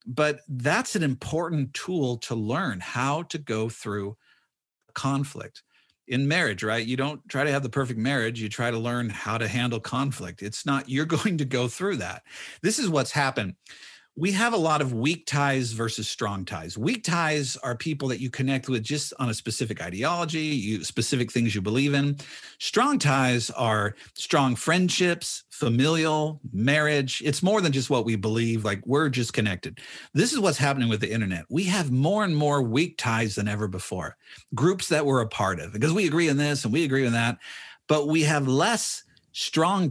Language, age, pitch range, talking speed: English, 50-69, 115-150 Hz, 190 wpm